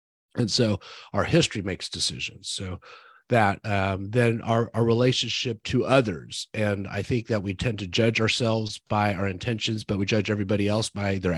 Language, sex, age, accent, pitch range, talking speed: English, male, 40-59, American, 100-125 Hz, 180 wpm